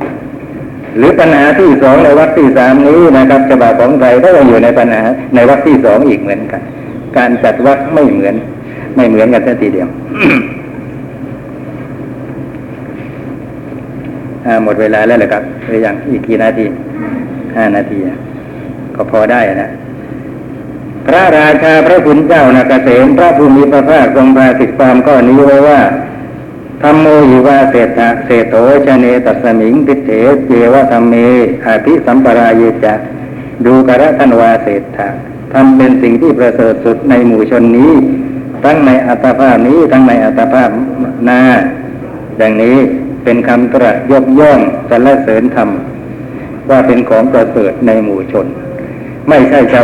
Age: 60-79